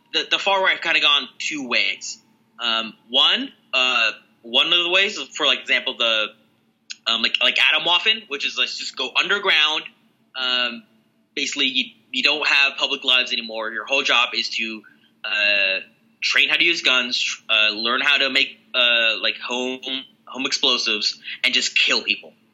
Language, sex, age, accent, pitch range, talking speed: English, male, 20-39, American, 115-150 Hz, 175 wpm